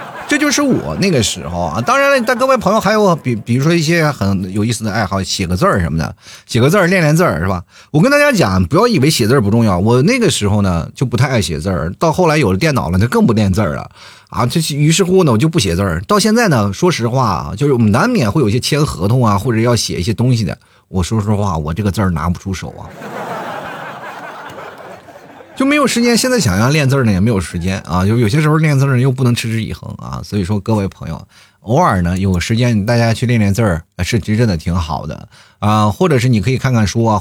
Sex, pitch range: male, 95-145 Hz